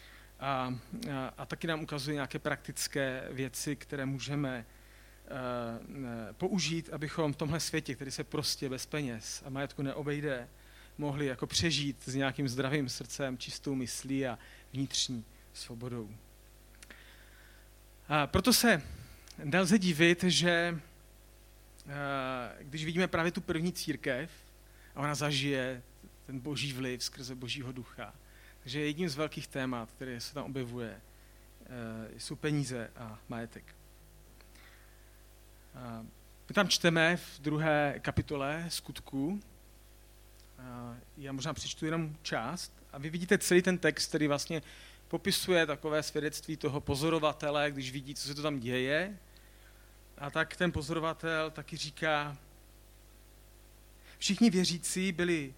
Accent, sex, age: native, male, 40-59